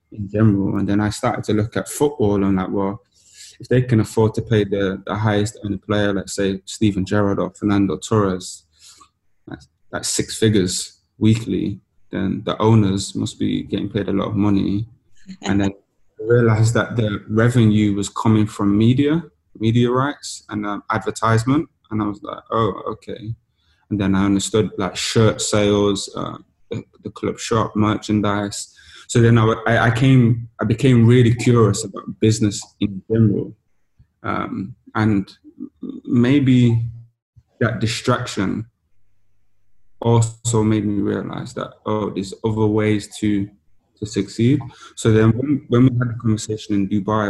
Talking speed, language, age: 155 wpm, English, 20-39